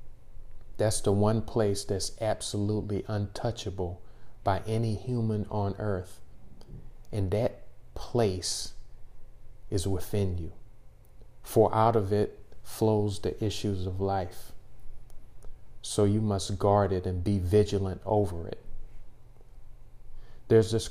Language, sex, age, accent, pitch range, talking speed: English, male, 40-59, American, 100-115 Hz, 110 wpm